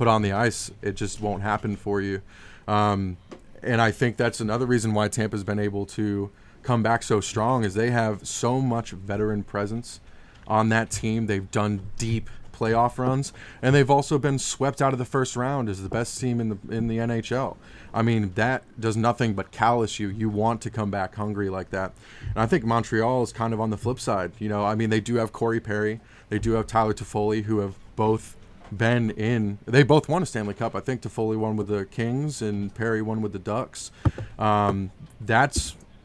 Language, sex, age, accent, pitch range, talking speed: English, male, 20-39, American, 105-120 Hz, 210 wpm